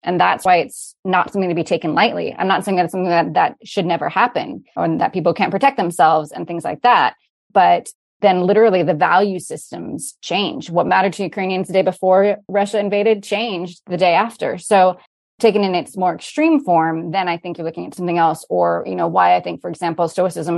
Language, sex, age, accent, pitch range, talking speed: English, female, 20-39, American, 175-210 Hz, 220 wpm